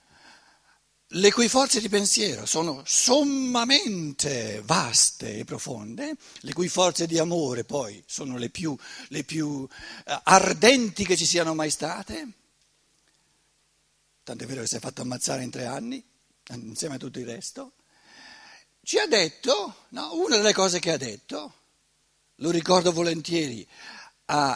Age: 60-79